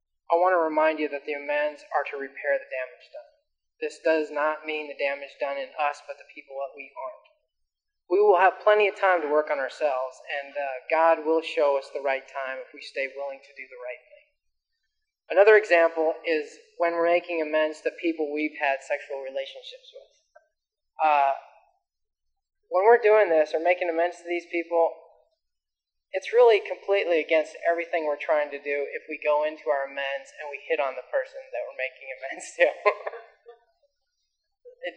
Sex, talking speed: male, 185 wpm